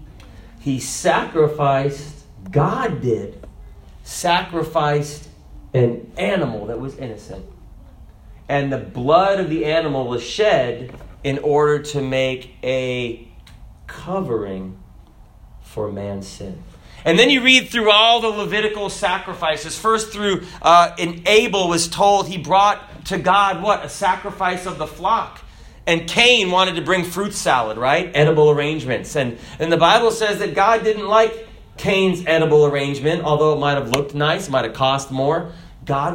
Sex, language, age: male, English, 40-59